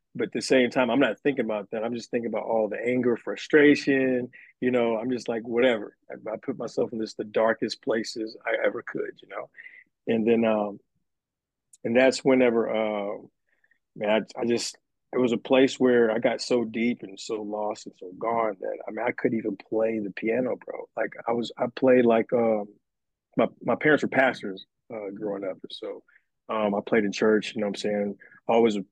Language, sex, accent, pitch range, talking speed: English, male, American, 110-130 Hz, 210 wpm